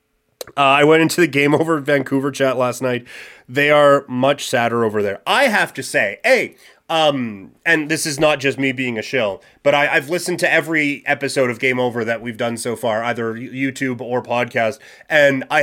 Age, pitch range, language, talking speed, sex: 30-49, 125-160 Hz, English, 200 wpm, male